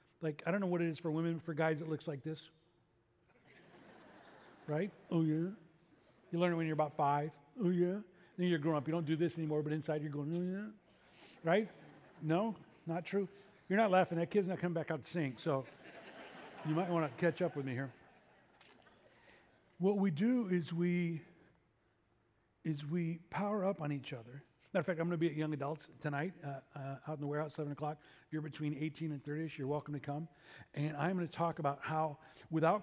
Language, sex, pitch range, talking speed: English, male, 150-175 Hz, 220 wpm